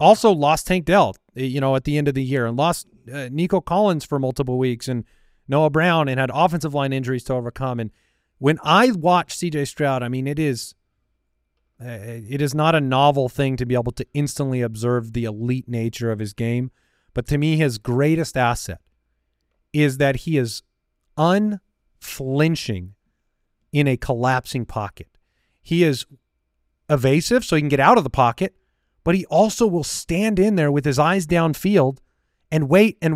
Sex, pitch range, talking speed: male, 115-170 Hz, 180 wpm